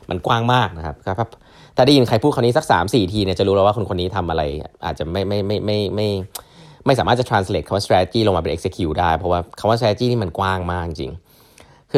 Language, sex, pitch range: Thai, male, 90-120 Hz